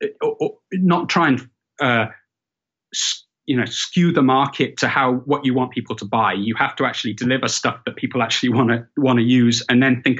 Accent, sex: British, male